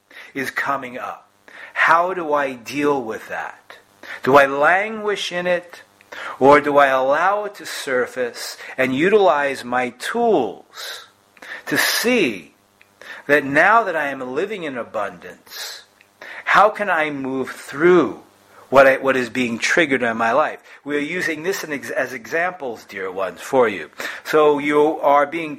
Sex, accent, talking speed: male, American, 145 wpm